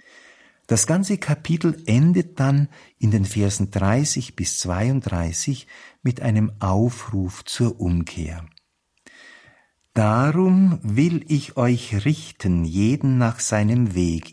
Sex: male